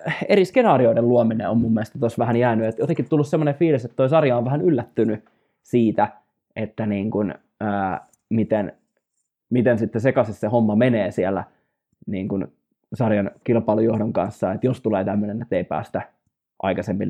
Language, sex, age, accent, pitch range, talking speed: Finnish, male, 20-39, native, 110-130 Hz, 160 wpm